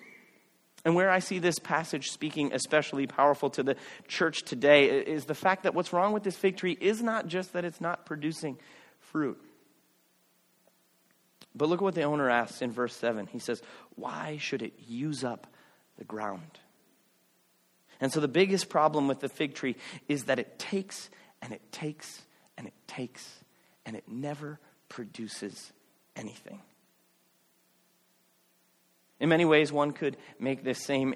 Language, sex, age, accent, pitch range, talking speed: English, male, 30-49, American, 125-160 Hz, 160 wpm